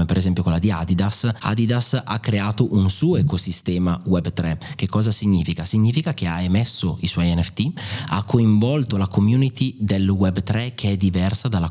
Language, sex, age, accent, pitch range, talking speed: Italian, male, 30-49, native, 90-115 Hz, 165 wpm